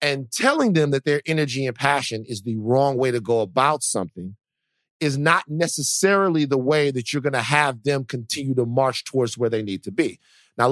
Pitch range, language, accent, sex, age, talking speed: 125-170 Hz, English, American, male, 40-59, 205 wpm